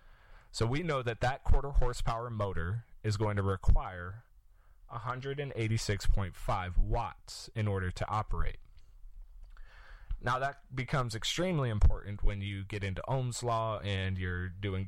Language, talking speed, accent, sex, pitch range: English, 155 wpm, American, male, 90-115 Hz